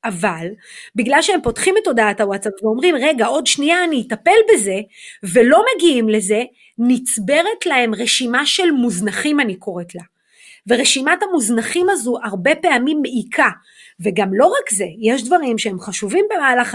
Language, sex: Hebrew, female